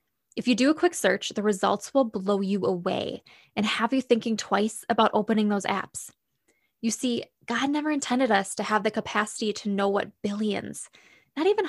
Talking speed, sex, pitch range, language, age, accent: 190 wpm, female, 210-255 Hz, English, 10-29, American